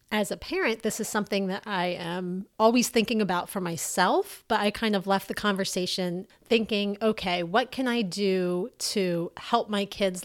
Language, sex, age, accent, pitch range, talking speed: English, female, 30-49, American, 185-225 Hz, 180 wpm